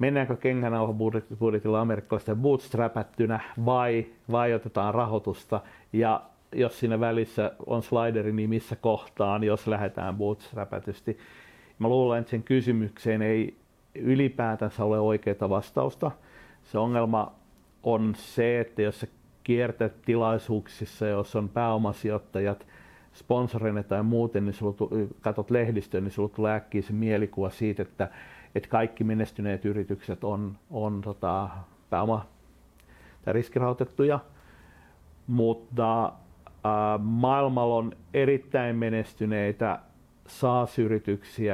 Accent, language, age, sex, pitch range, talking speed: native, Finnish, 50-69, male, 105-120 Hz, 105 wpm